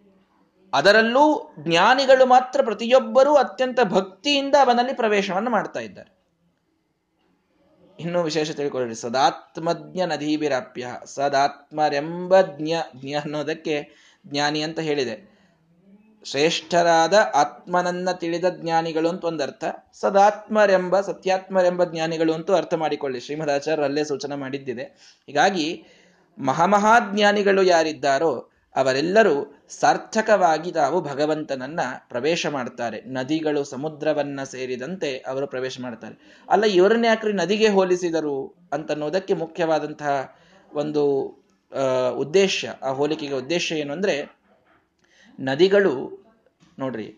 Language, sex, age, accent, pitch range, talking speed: Kannada, male, 20-39, native, 140-190 Hz, 90 wpm